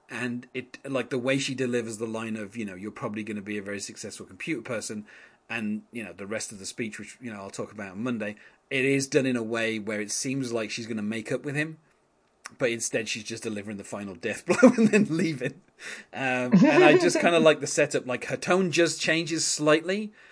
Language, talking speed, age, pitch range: English, 245 wpm, 30-49, 105-135 Hz